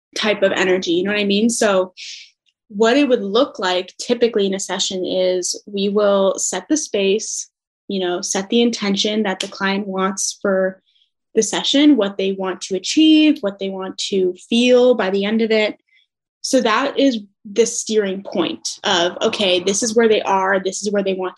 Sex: female